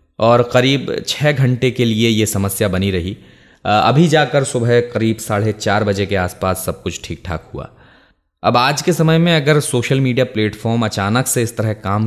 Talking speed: 190 wpm